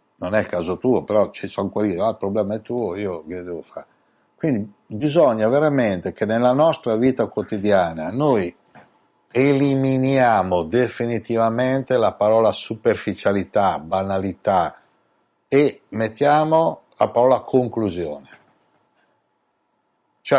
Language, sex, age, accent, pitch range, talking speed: Italian, male, 60-79, native, 95-130 Hz, 115 wpm